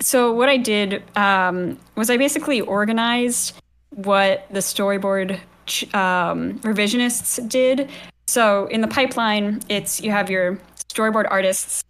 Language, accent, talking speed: English, American, 130 wpm